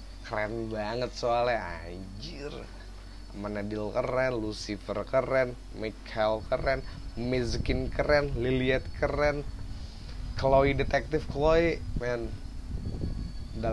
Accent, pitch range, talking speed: native, 100-125 Hz, 85 wpm